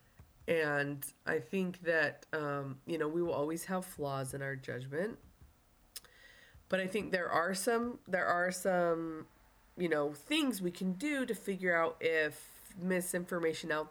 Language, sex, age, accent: English, female, 20-39, American